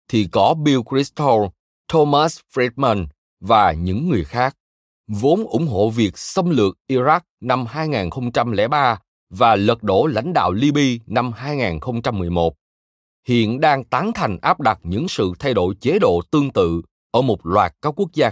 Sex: male